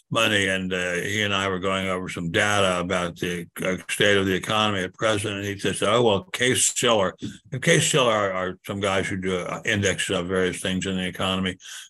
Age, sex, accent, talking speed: 60-79, male, American, 210 wpm